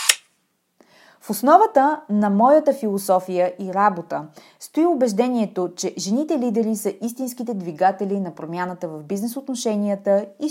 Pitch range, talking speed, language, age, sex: 190-240 Hz, 110 wpm, Bulgarian, 30-49, female